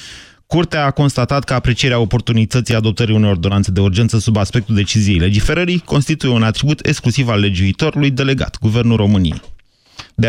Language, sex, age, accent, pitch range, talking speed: Romanian, male, 30-49, native, 105-130 Hz, 145 wpm